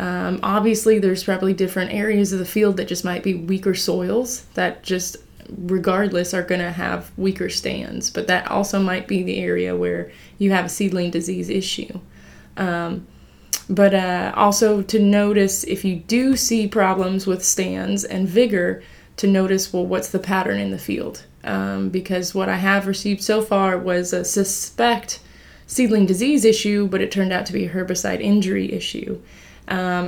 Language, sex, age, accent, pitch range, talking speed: English, female, 20-39, American, 180-205 Hz, 175 wpm